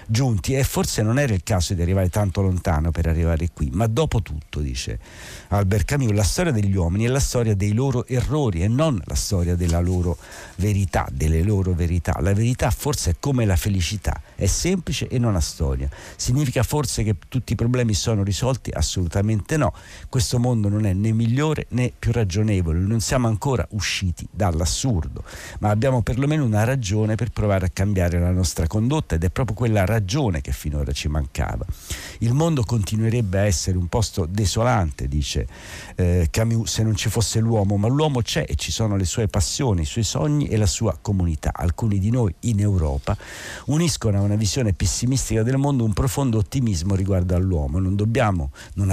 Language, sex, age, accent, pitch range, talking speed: Italian, male, 50-69, native, 90-120 Hz, 185 wpm